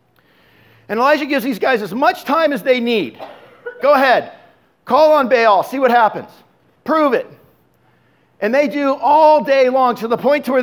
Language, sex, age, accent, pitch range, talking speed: English, male, 50-69, American, 210-260 Hz, 180 wpm